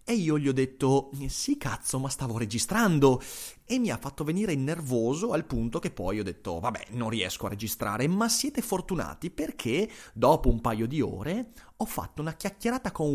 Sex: male